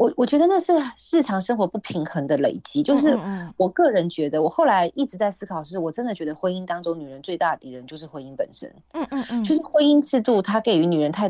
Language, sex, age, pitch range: Chinese, female, 30-49, 155-230 Hz